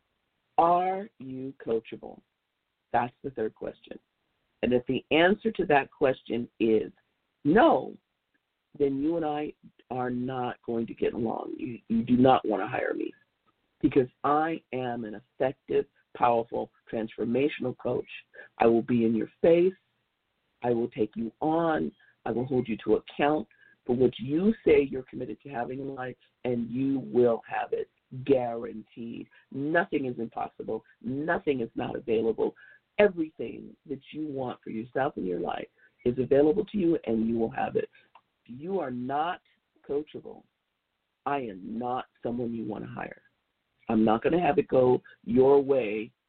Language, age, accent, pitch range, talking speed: English, 50-69, American, 120-160 Hz, 160 wpm